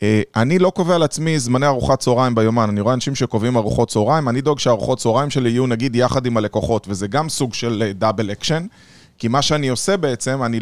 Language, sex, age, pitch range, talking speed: Hebrew, male, 20-39, 115-150 Hz, 205 wpm